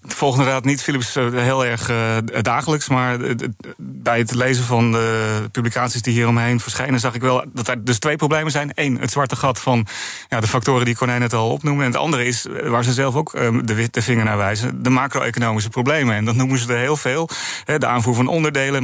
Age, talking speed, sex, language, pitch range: 30-49, 215 wpm, male, Dutch, 120-150 Hz